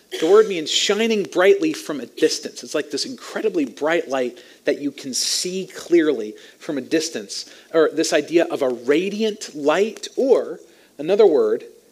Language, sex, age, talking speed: English, male, 40-59, 160 wpm